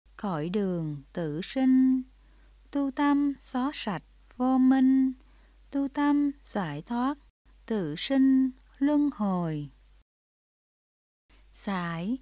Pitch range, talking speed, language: 180-275 Hz, 95 wpm, Vietnamese